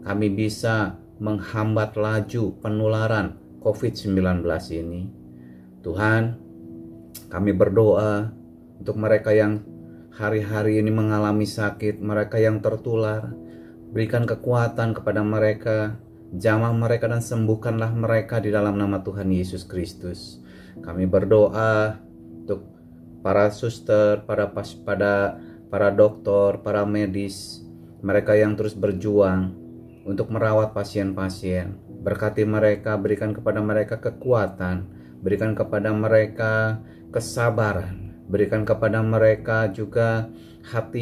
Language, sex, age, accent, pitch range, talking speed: Indonesian, male, 30-49, native, 95-110 Hz, 100 wpm